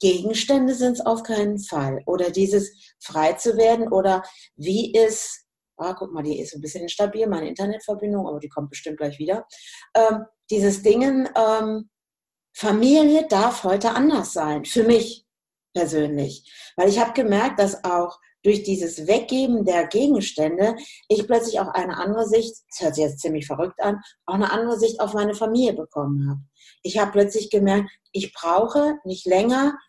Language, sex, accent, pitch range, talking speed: German, female, German, 170-220 Hz, 165 wpm